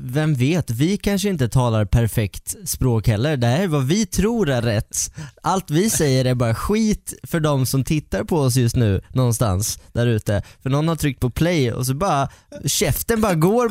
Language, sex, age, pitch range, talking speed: English, male, 10-29, 115-160 Hz, 200 wpm